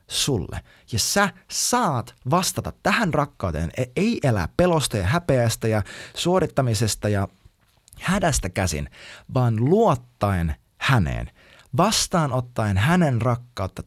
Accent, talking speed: native, 100 wpm